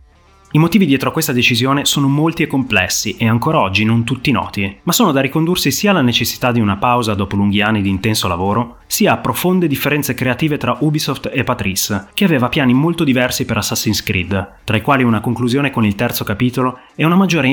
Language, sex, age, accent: Italian, male, 30-49, native